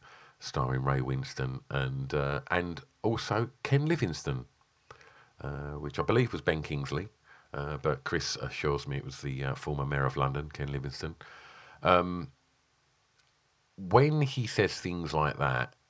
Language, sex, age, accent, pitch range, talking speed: English, male, 40-59, British, 70-115 Hz, 145 wpm